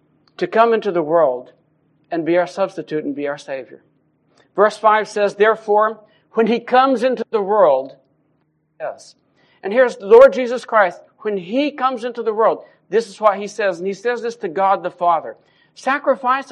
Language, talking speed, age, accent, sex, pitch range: English, 180 wpm, 60-79, American, male, 205-260 Hz